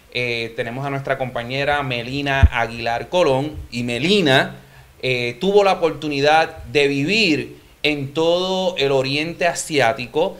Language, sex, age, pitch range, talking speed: English, male, 30-49, 135-170 Hz, 120 wpm